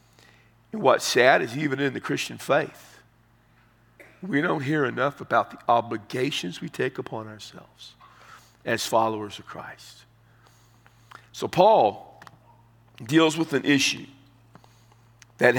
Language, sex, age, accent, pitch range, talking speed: English, male, 50-69, American, 115-145 Hz, 120 wpm